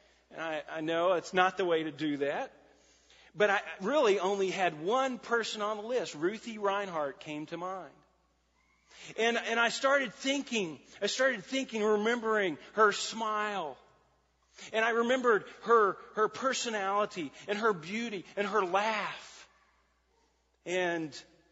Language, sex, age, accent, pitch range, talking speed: English, male, 40-59, American, 170-230 Hz, 140 wpm